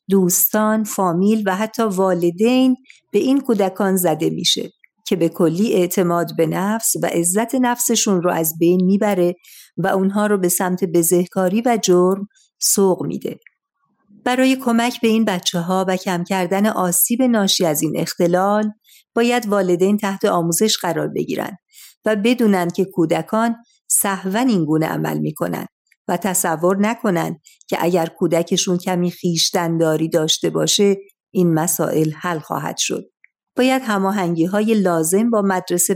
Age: 50-69